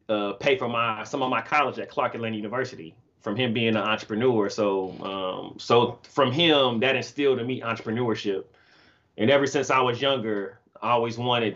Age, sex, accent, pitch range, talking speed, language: 30-49, male, American, 105-130 Hz, 185 wpm, English